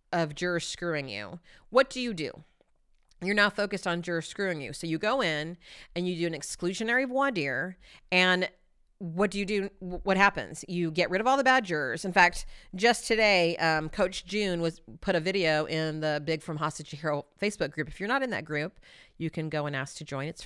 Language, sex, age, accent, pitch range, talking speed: English, female, 40-59, American, 150-200 Hz, 220 wpm